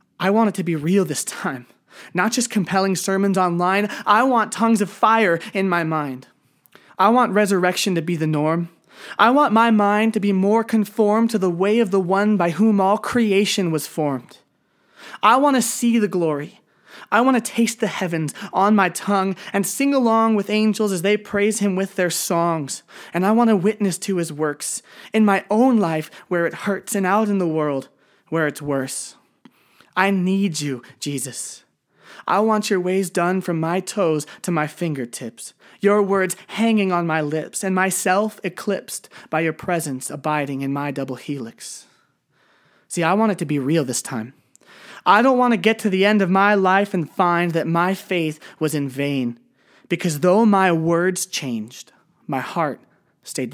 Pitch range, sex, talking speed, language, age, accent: 155-210 Hz, male, 185 wpm, English, 20-39, American